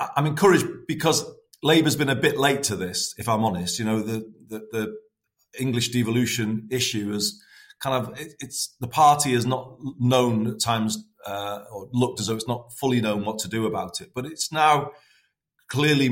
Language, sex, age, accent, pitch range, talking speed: English, male, 40-59, British, 105-135 Hz, 190 wpm